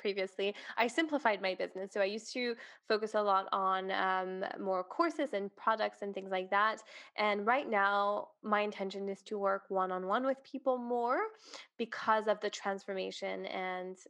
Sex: female